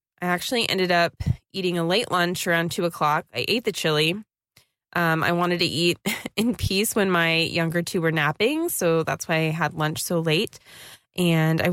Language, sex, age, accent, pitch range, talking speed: English, female, 20-39, American, 165-195 Hz, 195 wpm